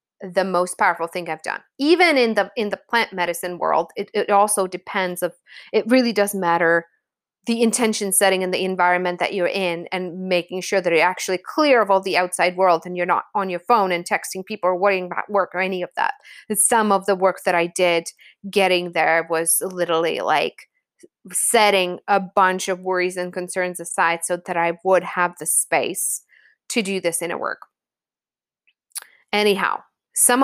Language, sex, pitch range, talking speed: English, female, 175-205 Hz, 185 wpm